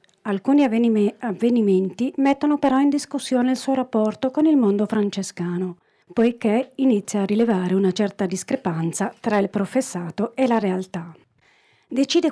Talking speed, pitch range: 130 wpm, 190-260 Hz